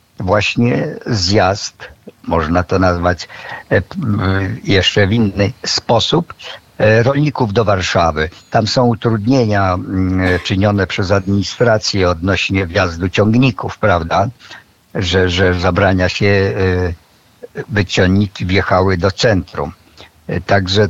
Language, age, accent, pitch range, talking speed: Polish, 50-69, native, 95-110 Hz, 90 wpm